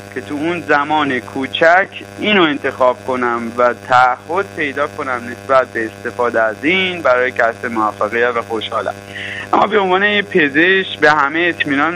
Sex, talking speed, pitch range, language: male, 145 wpm, 120-175 Hz, Persian